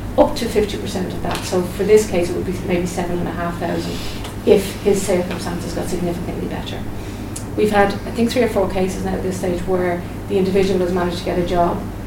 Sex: female